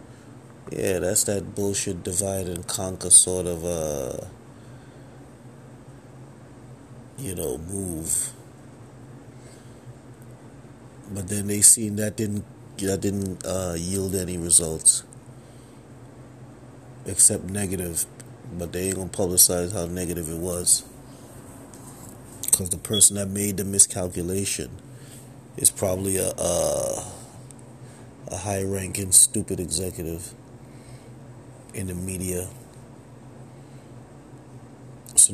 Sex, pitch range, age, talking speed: male, 95-125 Hz, 30-49, 95 wpm